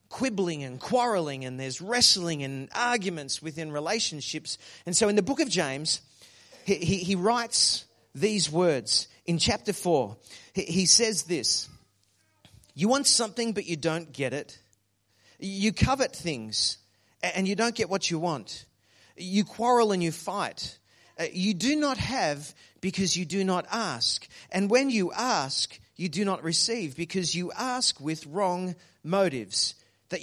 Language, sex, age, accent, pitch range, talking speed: English, male, 40-59, Australian, 135-210 Hz, 150 wpm